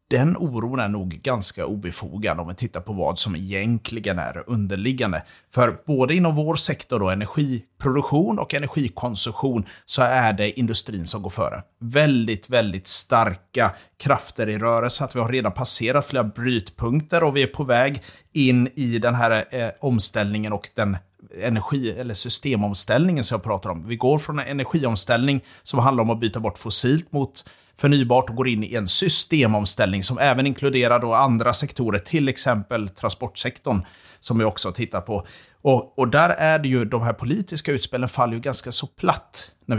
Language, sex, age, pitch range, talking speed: Swedish, male, 30-49, 105-135 Hz, 170 wpm